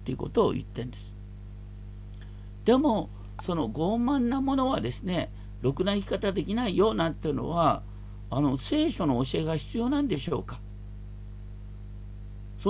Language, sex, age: Japanese, male, 50-69